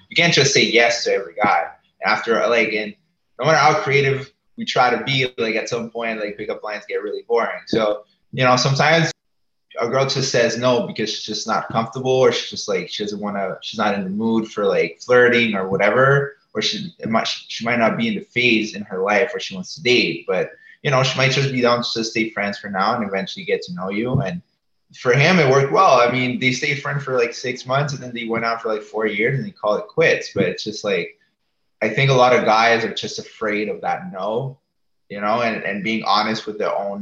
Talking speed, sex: 250 wpm, male